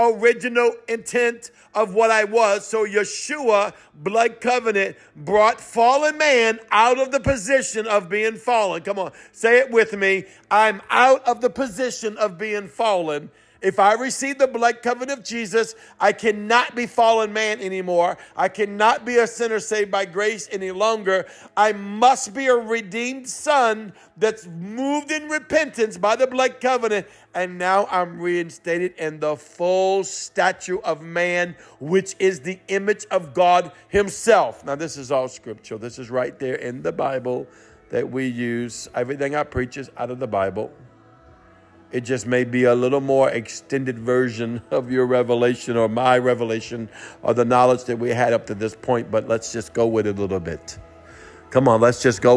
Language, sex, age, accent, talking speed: English, male, 50-69, American, 175 wpm